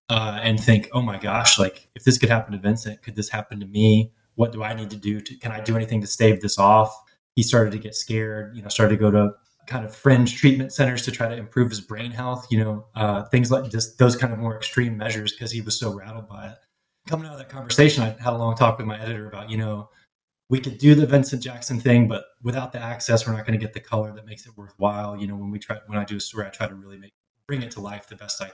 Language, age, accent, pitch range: English, 20-39, American, 105-120 Hz